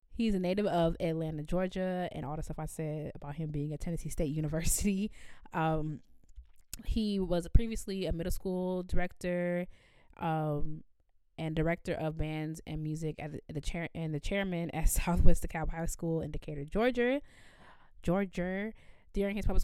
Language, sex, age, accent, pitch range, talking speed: English, female, 20-39, American, 155-180 Hz, 165 wpm